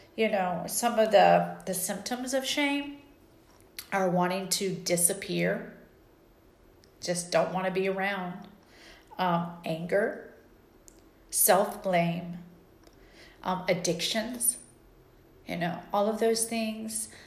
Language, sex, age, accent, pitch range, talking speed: English, female, 40-59, American, 175-200 Hz, 110 wpm